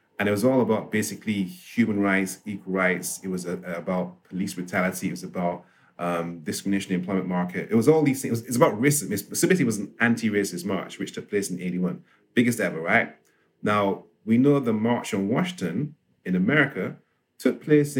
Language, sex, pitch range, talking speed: English, male, 95-135 Hz, 200 wpm